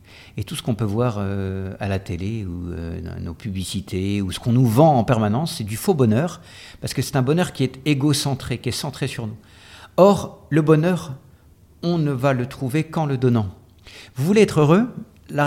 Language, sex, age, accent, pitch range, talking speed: French, male, 60-79, French, 110-165 Hz, 215 wpm